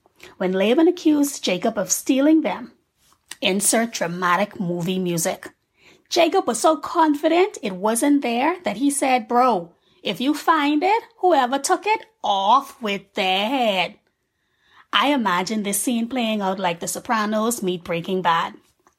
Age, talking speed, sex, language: 20-39, 140 wpm, female, English